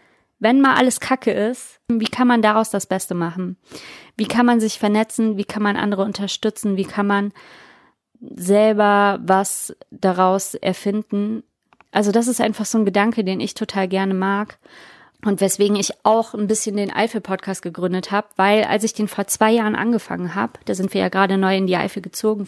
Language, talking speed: German, 185 wpm